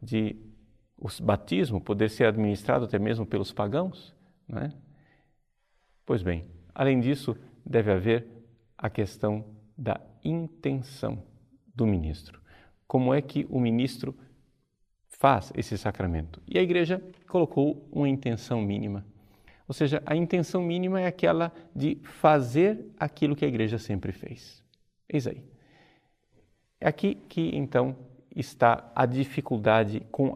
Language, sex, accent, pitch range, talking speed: Portuguese, male, Brazilian, 105-145 Hz, 125 wpm